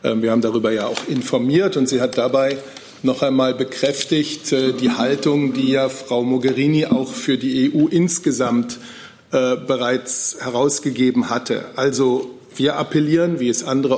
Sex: male